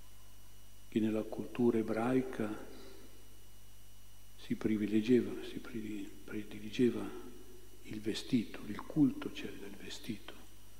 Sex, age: male, 50-69